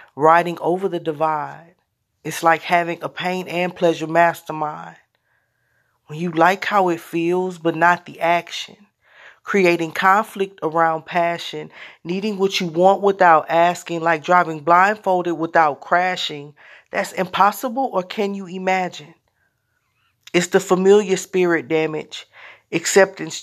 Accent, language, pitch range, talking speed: American, English, 170-195 Hz, 125 wpm